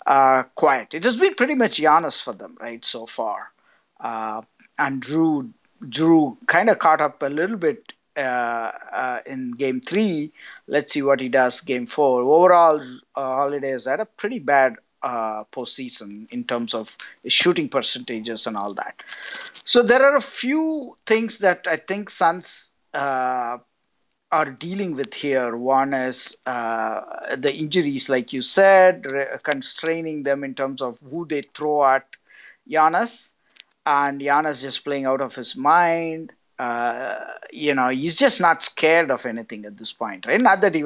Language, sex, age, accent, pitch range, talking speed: English, male, 50-69, Indian, 130-175 Hz, 165 wpm